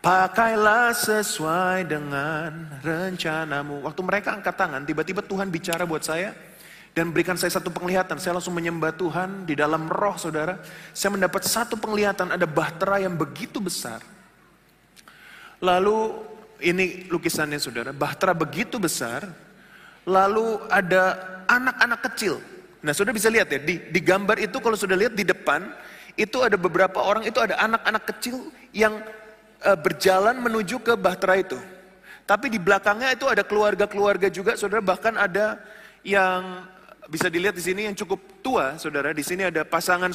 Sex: male